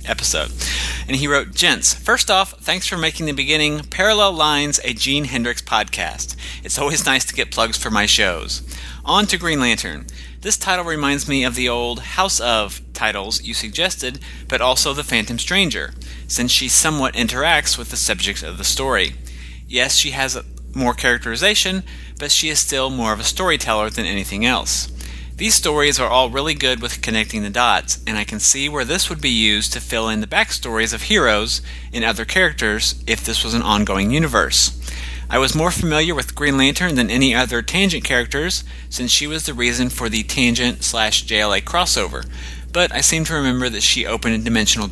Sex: male